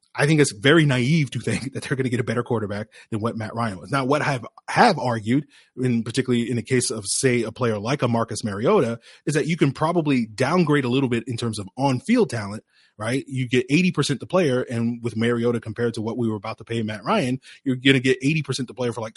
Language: English